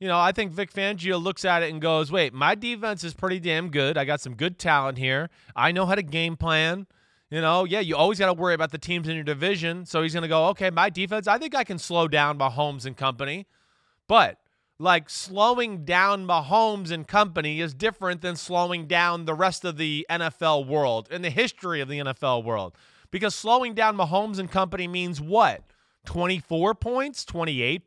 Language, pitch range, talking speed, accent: English, 155-205 Hz, 210 wpm, American